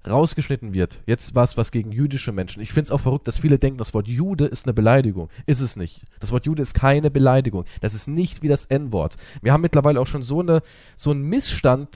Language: German